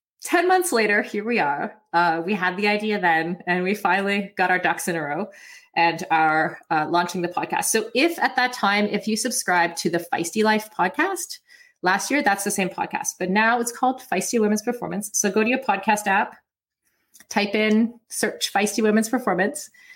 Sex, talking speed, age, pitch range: female, 195 wpm, 30-49, 180-240 Hz